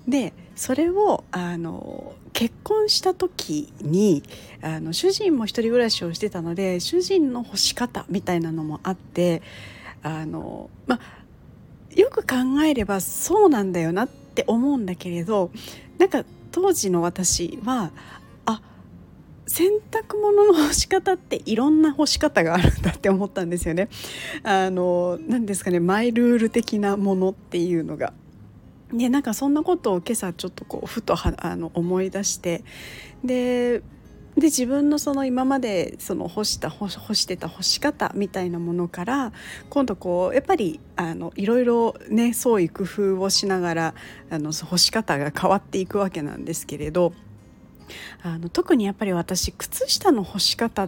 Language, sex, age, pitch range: Japanese, female, 40-59, 175-250 Hz